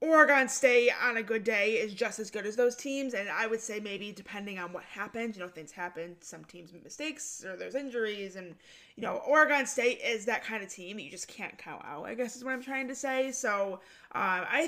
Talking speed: 245 wpm